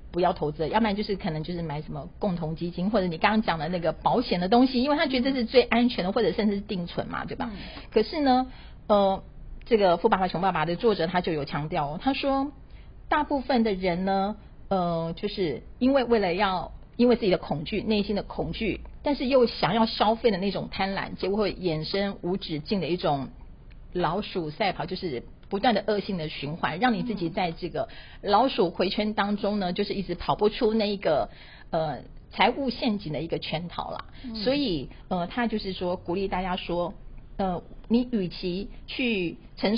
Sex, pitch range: female, 175-225 Hz